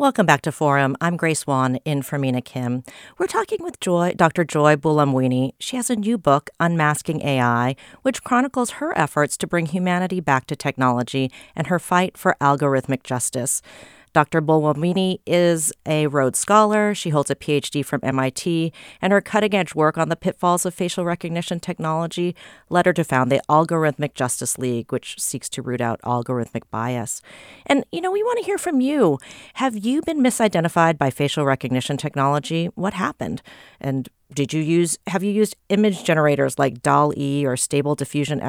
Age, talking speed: 40-59, 175 wpm